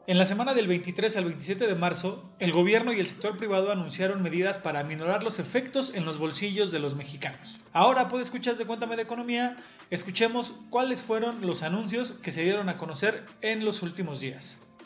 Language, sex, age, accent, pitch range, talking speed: Spanish, male, 30-49, Mexican, 180-235 Hz, 195 wpm